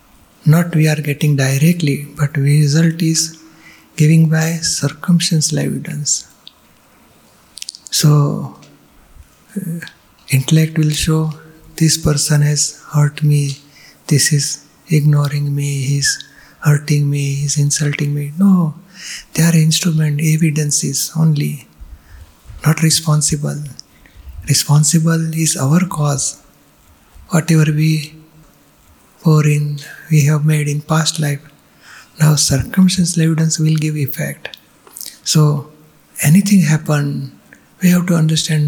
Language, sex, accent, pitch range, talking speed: Gujarati, male, native, 145-160 Hz, 110 wpm